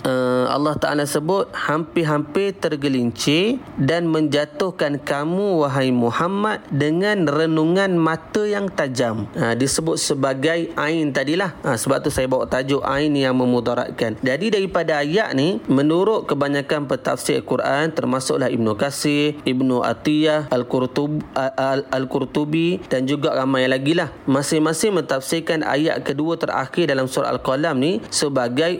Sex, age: male, 30-49